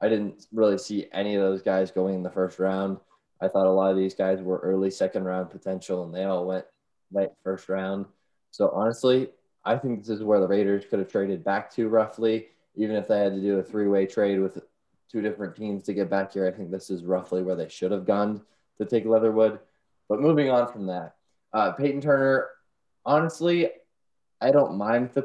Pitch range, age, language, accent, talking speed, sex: 95-115 Hz, 20-39, English, American, 210 wpm, male